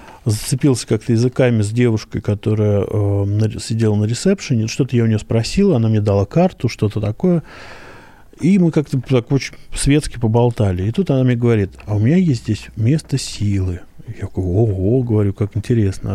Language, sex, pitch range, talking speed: Russian, male, 105-135 Hz, 170 wpm